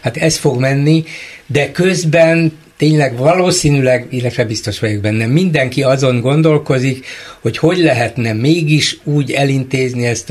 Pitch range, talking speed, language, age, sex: 110-135 Hz, 130 wpm, Hungarian, 60-79, male